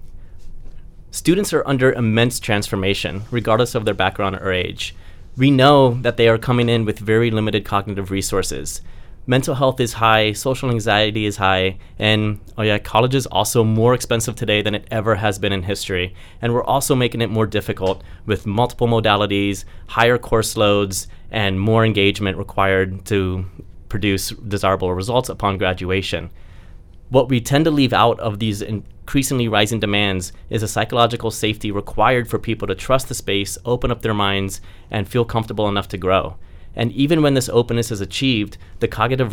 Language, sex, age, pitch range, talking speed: English, male, 30-49, 95-120 Hz, 170 wpm